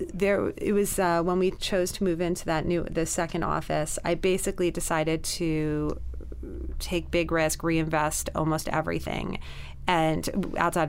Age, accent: 30-49, American